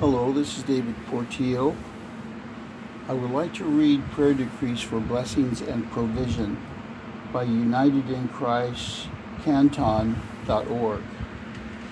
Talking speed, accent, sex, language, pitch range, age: 90 wpm, American, male, English, 115-145 Hz, 60-79